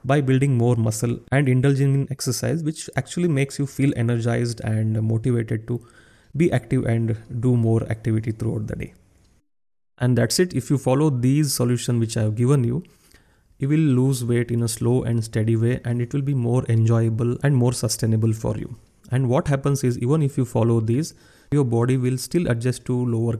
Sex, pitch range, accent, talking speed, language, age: male, 115-135 Hz, native, 195 wpm, Kannada, 30-49